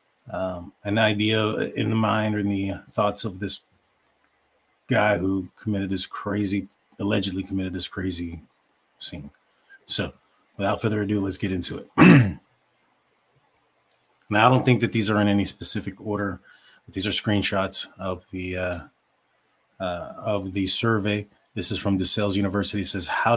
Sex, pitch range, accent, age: male, 95-115 Hz, American, 30-49